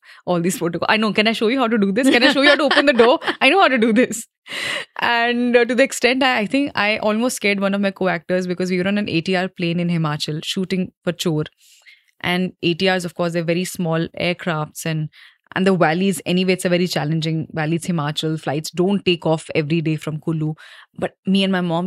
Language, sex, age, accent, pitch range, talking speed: English, female, 20-39, Indian, 175-215 Hz, 235 wpm